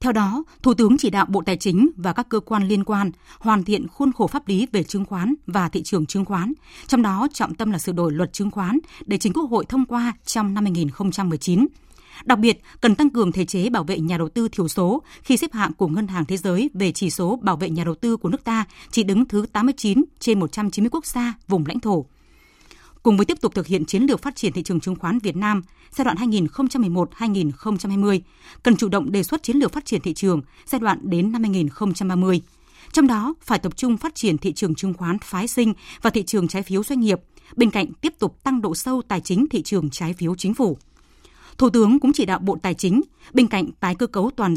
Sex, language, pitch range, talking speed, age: female, Vietnamese, 185-240 Hz, 235 wpm, 20-39